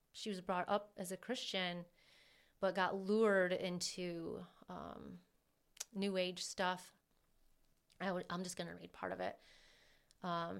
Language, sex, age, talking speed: English, female, 30-49, 135 wpm